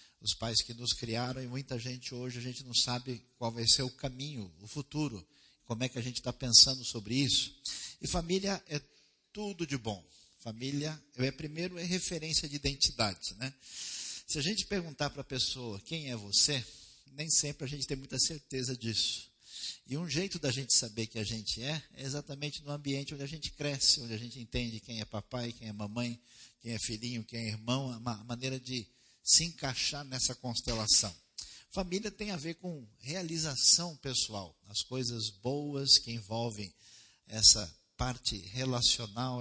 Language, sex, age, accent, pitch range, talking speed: Portuguese, male, 50-69, Brazilian, 115-140 Hz, 180 wpm